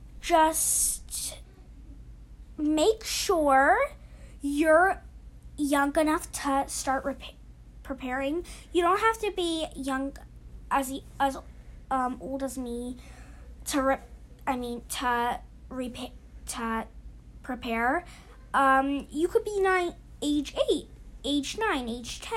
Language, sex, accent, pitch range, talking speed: English, female, American, 240-295 Hz, 95 wpm